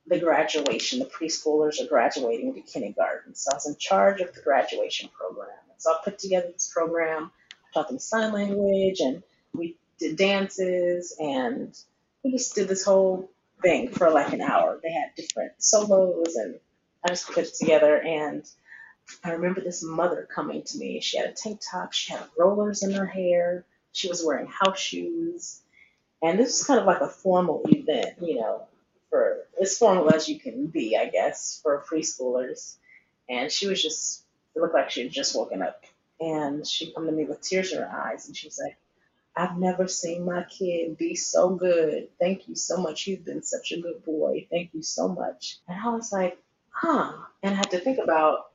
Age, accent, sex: 30-49, American, female